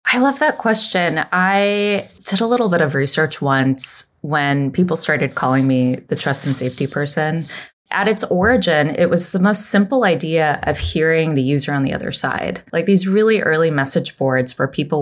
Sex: female